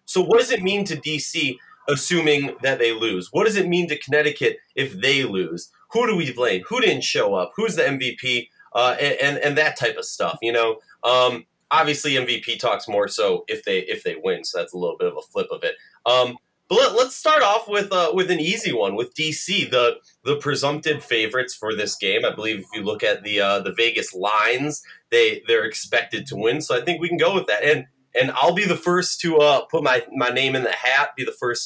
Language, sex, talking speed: English, male, 235 wpm